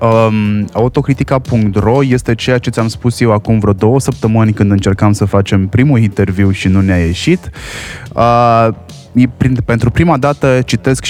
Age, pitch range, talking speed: 20-39, 105-125 Hz, 135 wpm